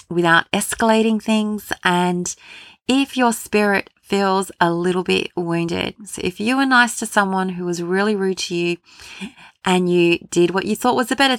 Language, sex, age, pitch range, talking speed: English, female, 30-49, 180-215 Hz, 180 wpm